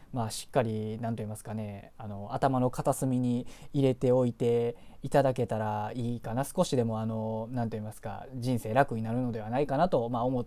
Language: Japanese